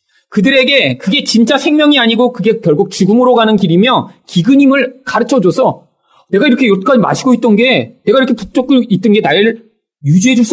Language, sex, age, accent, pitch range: Korean, male, 40-59, native, 180-270 Hz